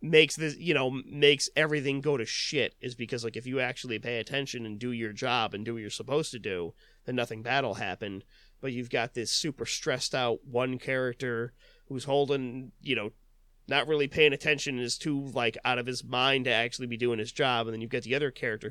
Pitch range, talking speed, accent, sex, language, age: 120-145 Hz, 225 wpm, American, male, English, 30-49